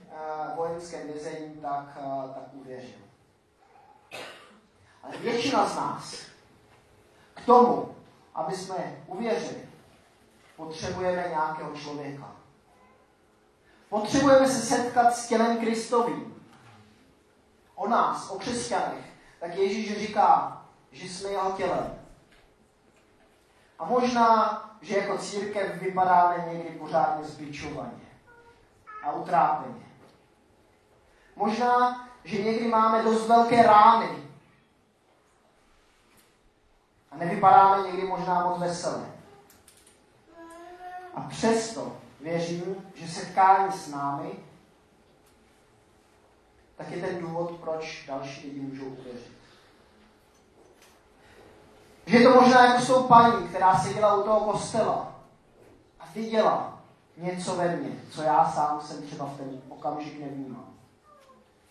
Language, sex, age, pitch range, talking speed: Czech, male, 30-49, 150-225 Hz, 95 wpm